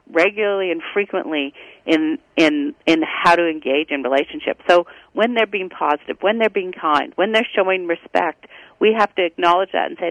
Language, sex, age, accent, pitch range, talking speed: English, female, 40-59, American, 160-205 Hz, 185 wpm